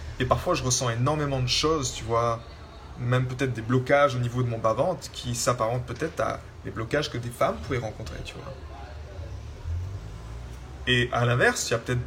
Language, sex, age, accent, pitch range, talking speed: French, male, 20-39, French, 110-135 Hz, 190 wpm